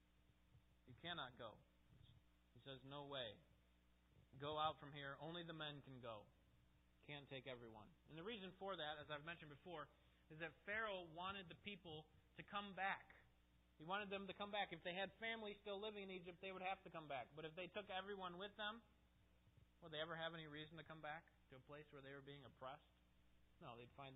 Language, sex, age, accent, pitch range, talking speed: English, male, 30-49, American, 115-170 Hz, 210 wpm